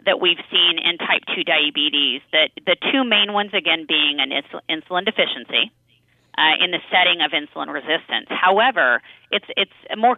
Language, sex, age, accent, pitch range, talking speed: English, female, 40-59, American, 170-225 Hz, 165 wpm